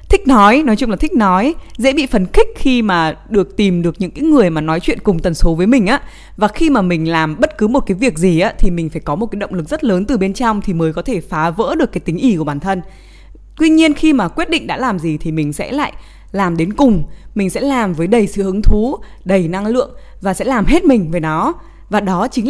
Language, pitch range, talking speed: Vietnamese, 175-245 Hz, 275 wpm